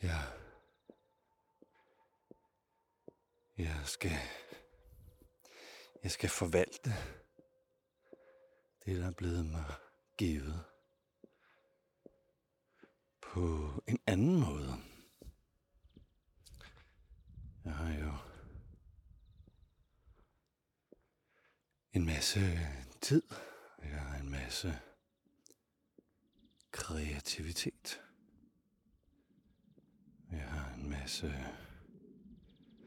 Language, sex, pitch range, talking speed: Danish, male, 80-115 Hz, 50 wpm